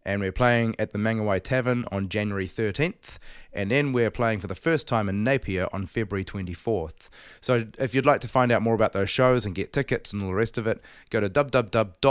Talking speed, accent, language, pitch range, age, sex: 225 wpm, Australian, English, 95-120 Hz, 30-49, male